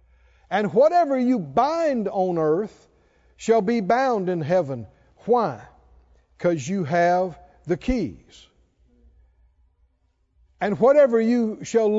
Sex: male